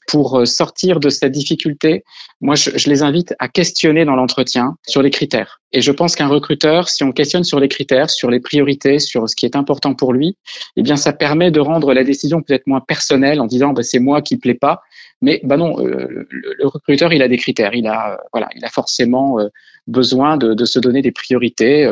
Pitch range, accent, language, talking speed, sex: 125-150 Hz, French, French, 230 wpm, male